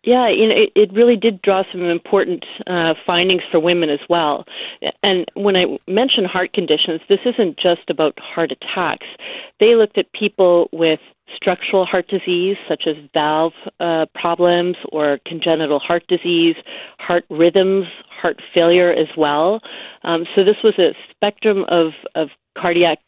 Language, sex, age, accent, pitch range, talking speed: English, female, 40-59, American, 160-200 Hz, 155 wpm